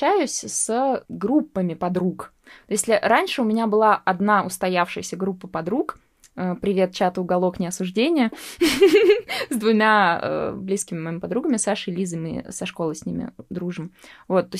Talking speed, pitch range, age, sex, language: 125 wpm, 190-245 Hz, 20-39, female, Russian